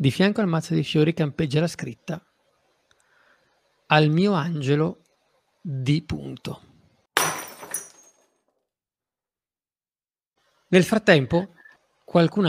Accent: native